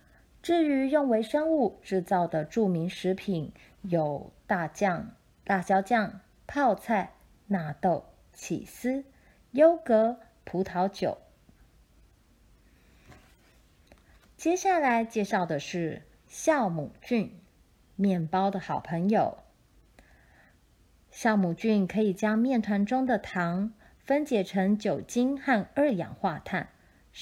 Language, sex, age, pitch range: Chinese, female, 30-49, 180-240 Hz